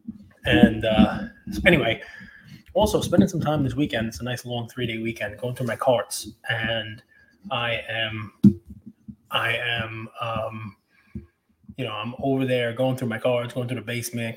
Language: English